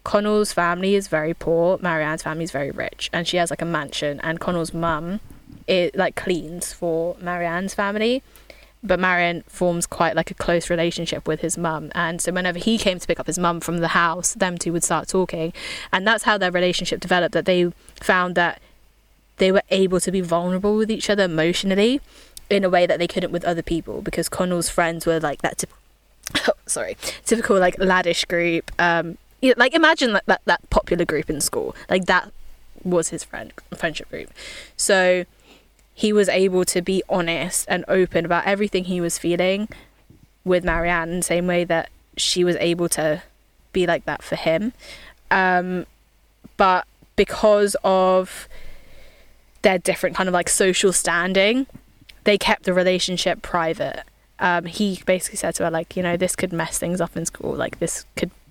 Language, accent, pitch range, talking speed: English, British, 170-190 Hz, 185 wpm